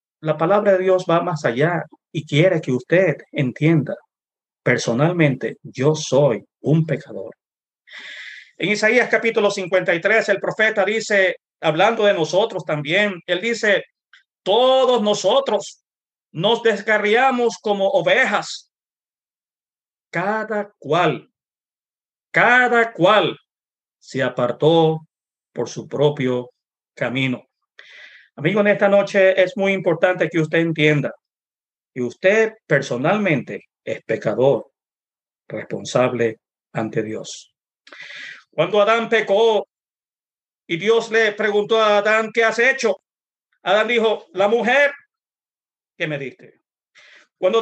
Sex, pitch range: male, 165-225 Hz